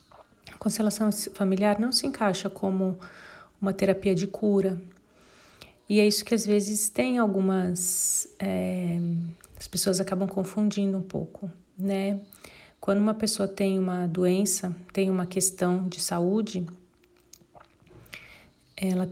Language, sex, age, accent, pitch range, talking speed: Portuguese, female, 40-59, Brazilian, 180-210 Hz, 120 wpm